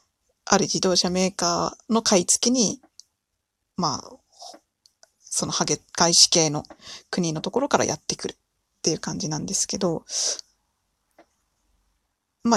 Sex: female